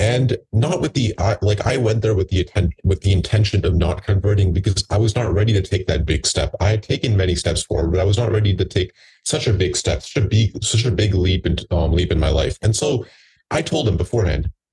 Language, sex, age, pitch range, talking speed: English, male, 30-49, 85-105 Hz, 260 wpm